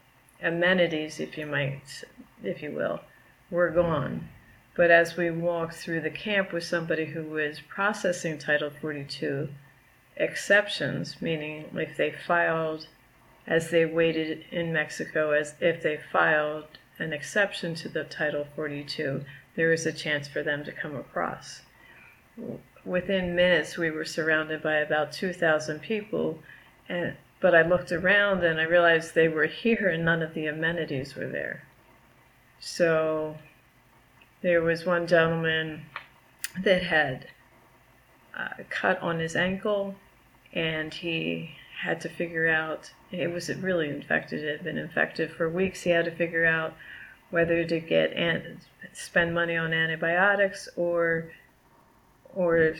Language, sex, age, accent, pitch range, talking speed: English, female, 40-59, American, 150-175 Hz, 140 wpm